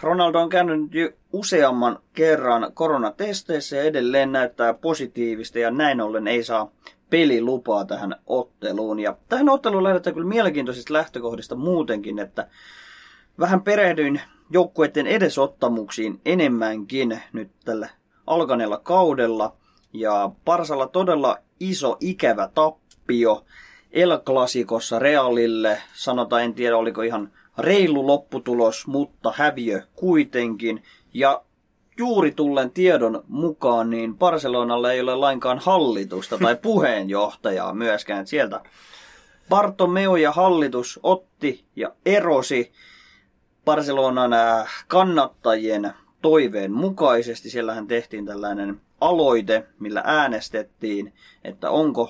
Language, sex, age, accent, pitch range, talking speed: Finnish, male, 20-39, native, 115-160 Hz, 100 wpm